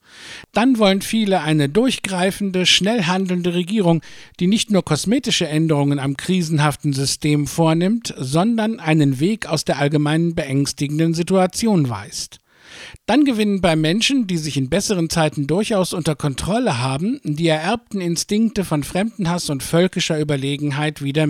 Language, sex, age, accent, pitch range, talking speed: English, male, 50-69, German, 150-190 Hz, 135 wpm